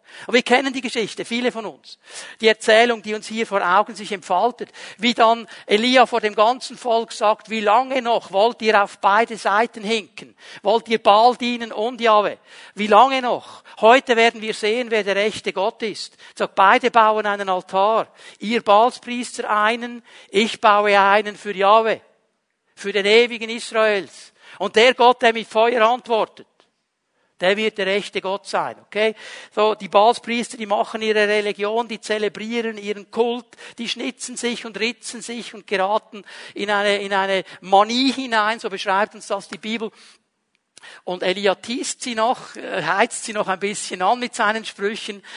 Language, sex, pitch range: German, male, 205-235 Hz